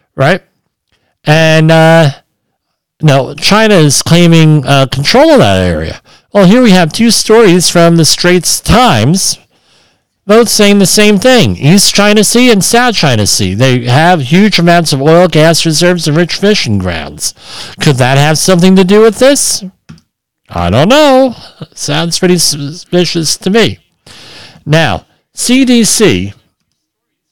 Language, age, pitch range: English, 50-69, 115-180 Hz